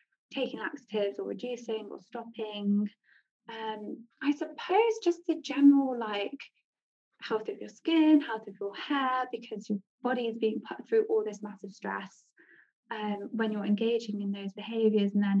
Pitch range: 205-280 Hz